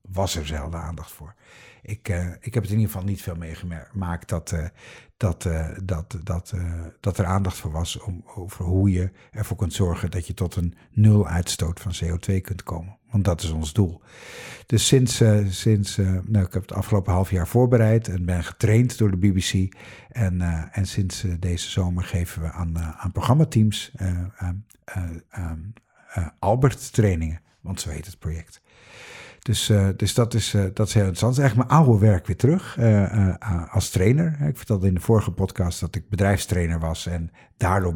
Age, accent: 50-69, Dutch